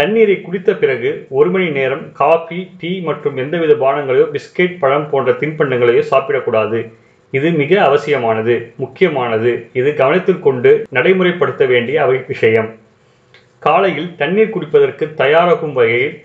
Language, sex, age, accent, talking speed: Tamil, male, 30-49, native, 120 wpm